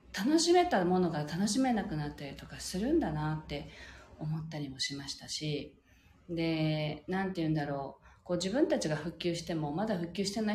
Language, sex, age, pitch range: Japanese, female, 40-59, 155-225 Hz